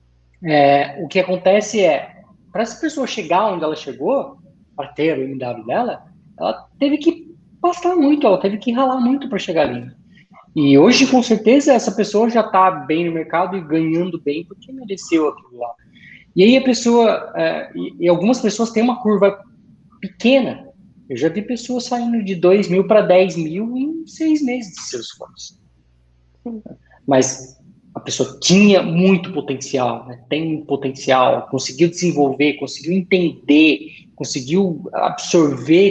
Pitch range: 150-215 Hz